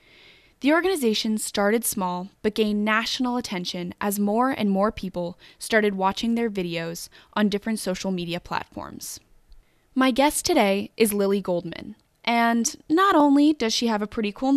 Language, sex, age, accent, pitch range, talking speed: English, female, 20-39, American, 185-240 Hz, 150 wpm